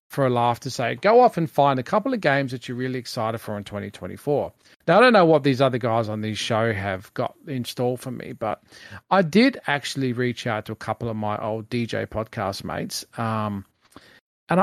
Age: 40-59